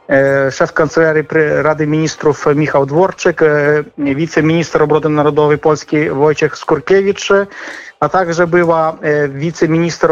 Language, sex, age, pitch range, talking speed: Polish, male, 40-59, 145-165 Hz, 95 wpm